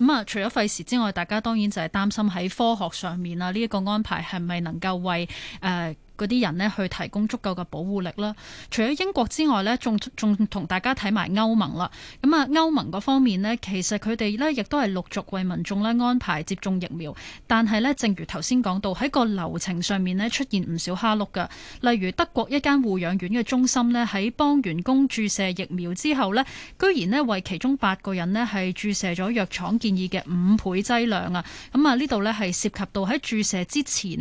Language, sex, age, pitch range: Chinese, female, 20-39, 185-250 Hz